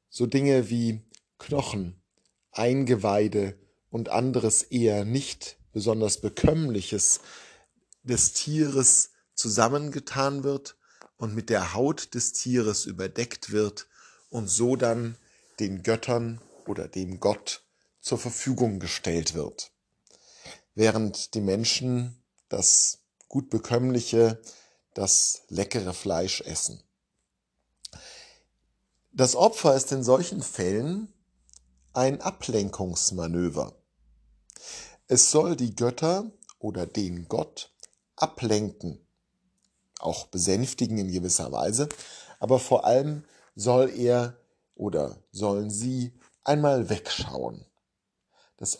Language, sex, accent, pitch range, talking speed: German, male, German, 105-130 Hz, 95 wpm